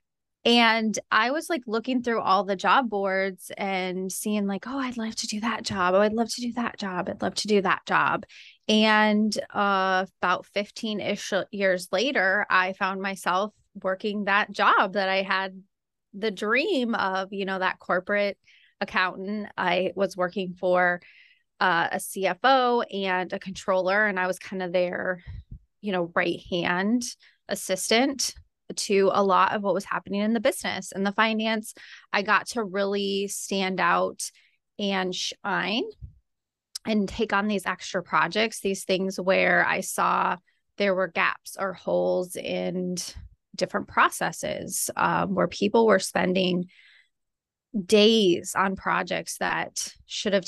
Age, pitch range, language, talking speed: 20-39, 185-215 Hz, English, 150 wpm